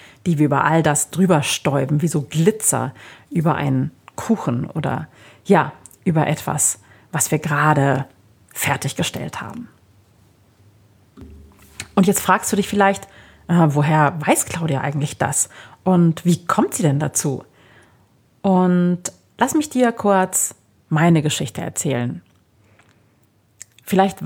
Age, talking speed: 30-49, 120 wpm